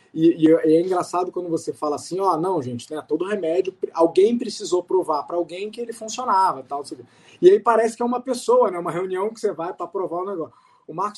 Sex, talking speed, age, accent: male, 240 wpm, 20-39, Brazilian